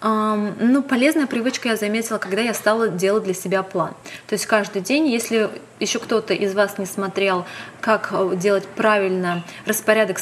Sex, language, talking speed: female, Russian, 160 wpm